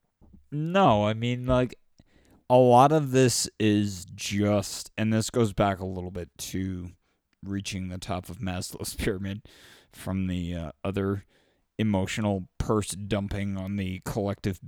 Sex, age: male, 20-39